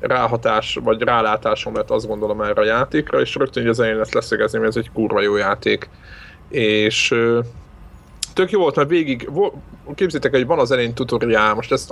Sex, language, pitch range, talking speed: male, Hungarian, 110-125 Hz, 180 wpm